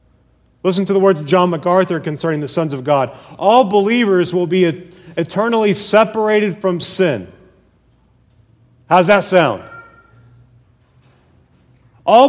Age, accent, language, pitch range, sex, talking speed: 40-59, American, English, 165-210 Hz, male, 115 wpm